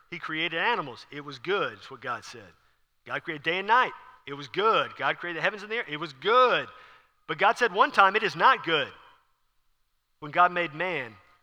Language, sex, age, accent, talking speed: English, male, 40-59, American, 215 wpm